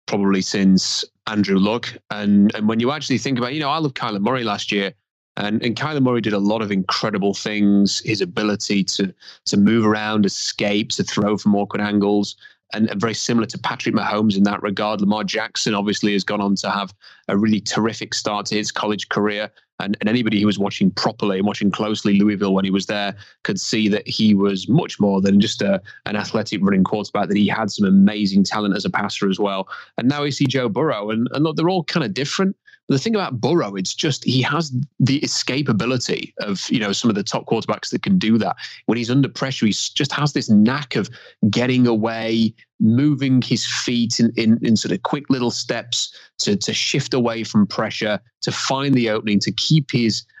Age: 30-49